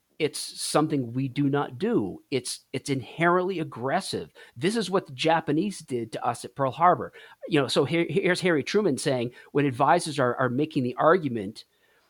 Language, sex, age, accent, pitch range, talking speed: English, male, 40-59, American, 120-160 Hz, 180 wpm